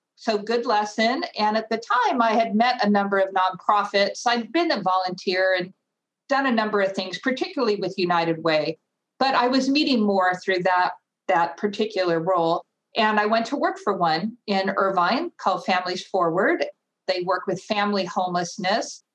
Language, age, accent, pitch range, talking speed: English, 50-69, American, 185-225 Hz, 170 wpm